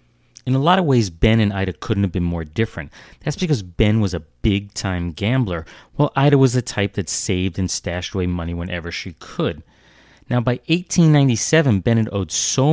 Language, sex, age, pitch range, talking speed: English, male, 30-49, 90-115 Hz, 195 wpm